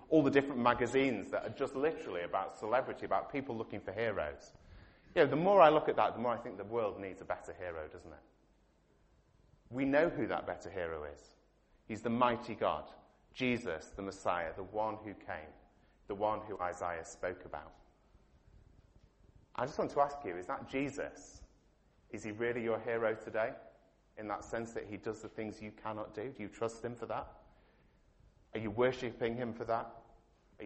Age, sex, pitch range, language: 30-49, male, 100-125 Hz, English